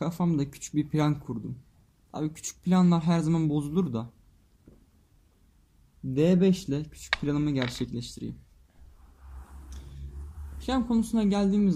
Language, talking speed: English, 100 wpm